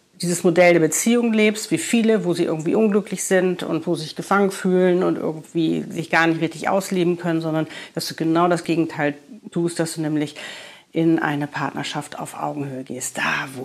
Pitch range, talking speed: 160-210 Hz, 195 wpm